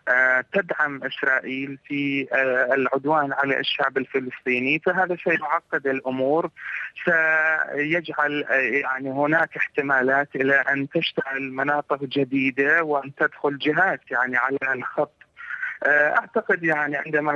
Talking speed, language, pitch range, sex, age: 100 wpm, Arabic, 140-175 Hz, male, 30-49